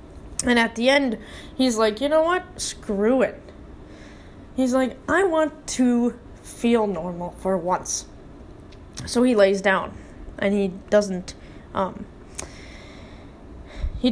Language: English